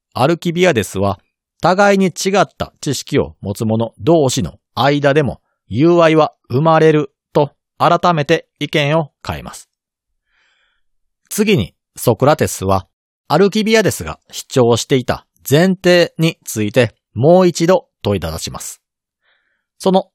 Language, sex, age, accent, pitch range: Japanese, male, 40-59, native, 115-180 Hz